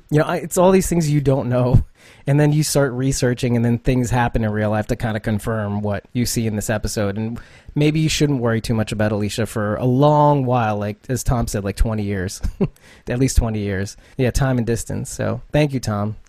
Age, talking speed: 30-49, 230 wpm